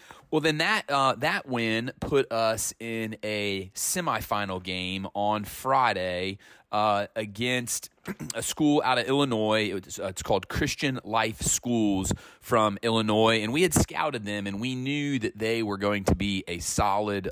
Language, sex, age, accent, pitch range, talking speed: English, male, 30-49, American, 100-120 Hz, 165 wpm